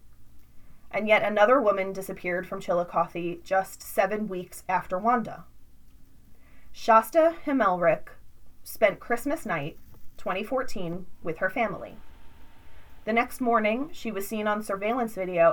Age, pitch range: 30-49, 175-215 Hz